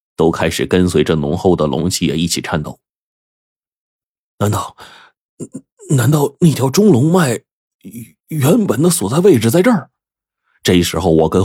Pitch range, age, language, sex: 85-130 Hz, 30-49, Chinese, male